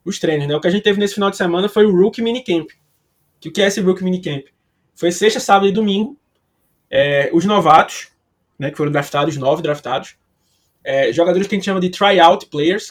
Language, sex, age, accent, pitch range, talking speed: Portuguese, male, 20-39, Brazilian, 155-200 Hz, 215 wpm